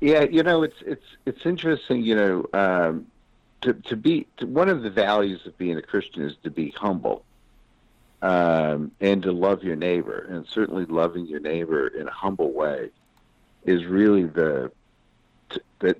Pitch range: 85-120 Hz